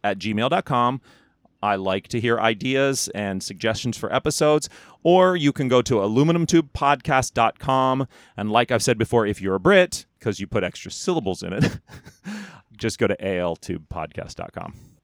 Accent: American